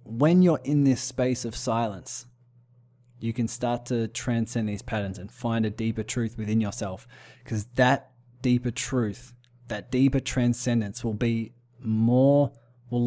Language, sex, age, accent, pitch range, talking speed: English, male, 20-39, Australian, 115-130 Hz, 145 wpm